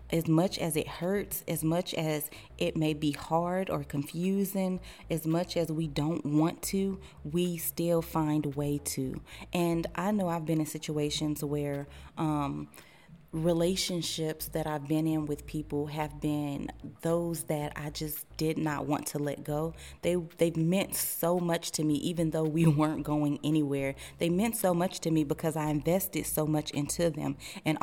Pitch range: 150-170 Hz